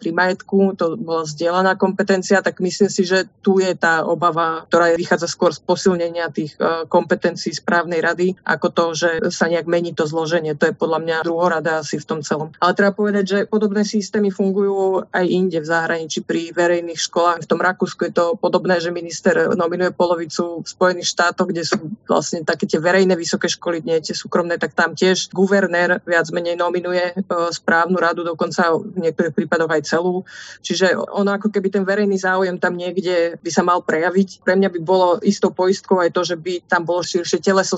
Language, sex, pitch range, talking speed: Slovak, female, 170-185 Hz, 190 wpm